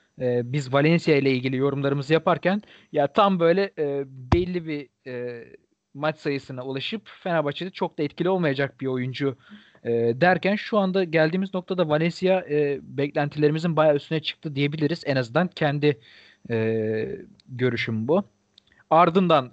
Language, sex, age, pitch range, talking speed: Turkish, male, 40-59, 135-170 Hz, 130 wpm